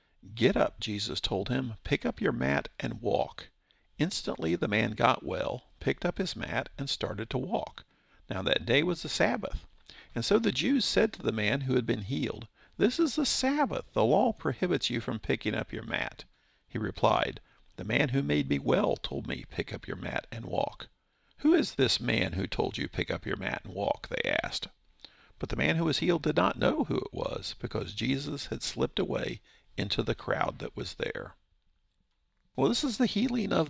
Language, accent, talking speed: English, American, 205 wpm